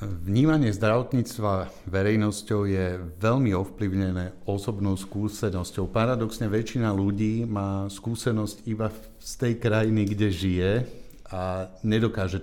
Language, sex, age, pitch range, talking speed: Slovak, male, 50-69, 95-110 Hz, 100 wpm